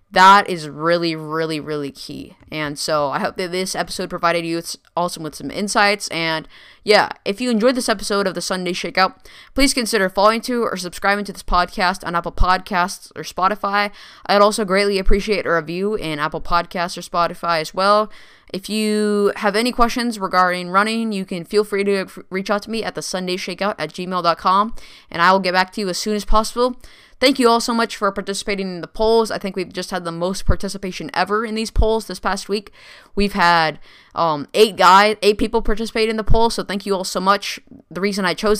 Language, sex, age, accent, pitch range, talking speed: English, female, 10-29, American, 175-210 Hz, 210 wpm